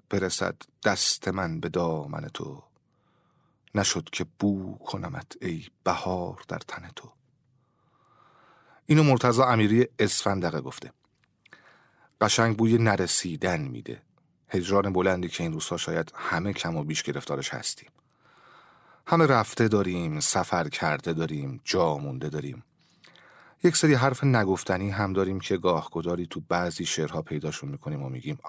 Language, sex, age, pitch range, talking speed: Persian, male, 30-49, 95-130 Hz, 125 wpm